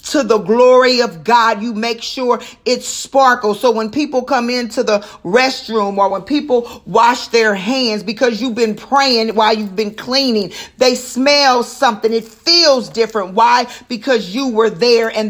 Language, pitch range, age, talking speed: English, 225-255 Hz, 40-59, 170 wpm